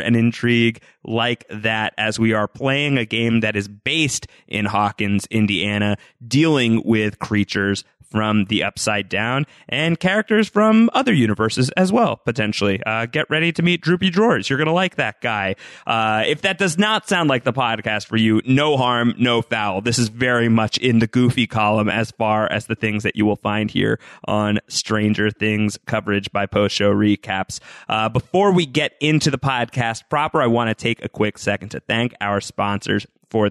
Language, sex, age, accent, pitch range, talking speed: English, male, 30-49, American, 105-165 Hz, 190 wpm